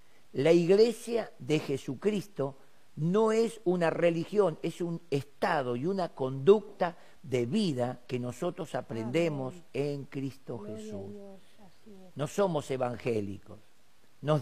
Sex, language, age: male, Spanish, 50-69